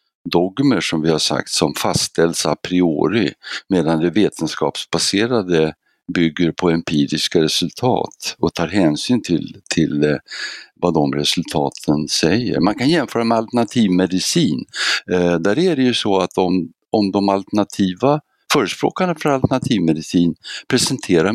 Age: 60-79